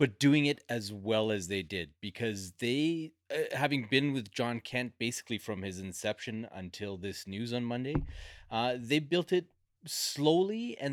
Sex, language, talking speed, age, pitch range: male, English, 170 wpm, 30-49, 90-120 Hz